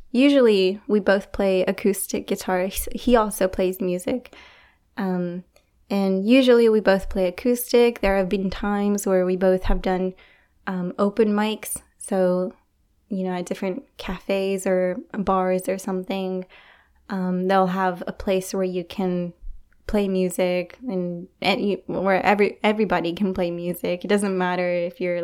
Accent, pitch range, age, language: American, 185-205 Hz, 10-29, English